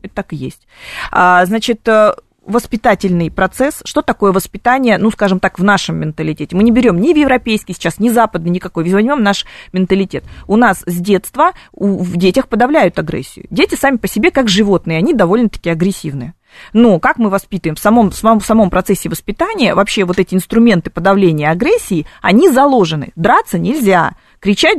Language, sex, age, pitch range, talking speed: Russian, female, 30-49, 185-235 Hz, 160 wpm